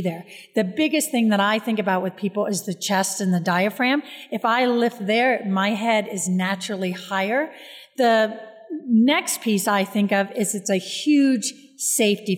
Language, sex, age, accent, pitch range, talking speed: English, female, 40-59, American, 200-255 Hz, 175 wpm